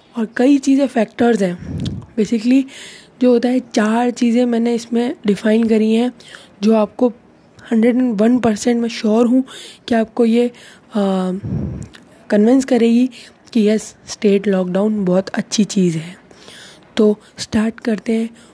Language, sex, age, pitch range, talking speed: Hindi, female, 20-39, 200-235 Hz, 130 wpm